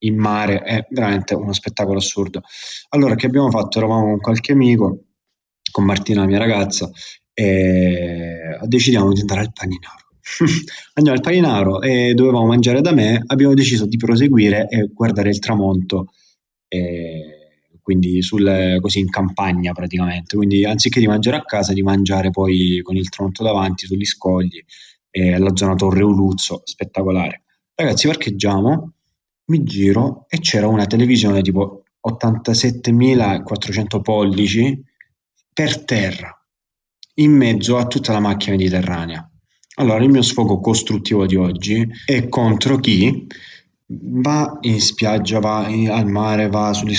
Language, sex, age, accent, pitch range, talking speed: Italian, male, 20-39, native, 95-115 Hz, 140 wpm